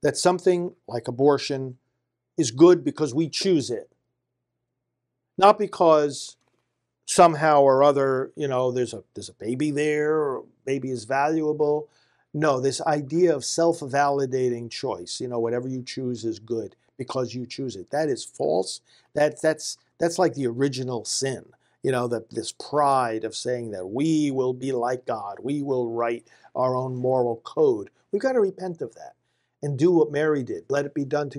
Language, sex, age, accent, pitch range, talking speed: English, male, 50-69, American, 125-150 Hz, 175 wpm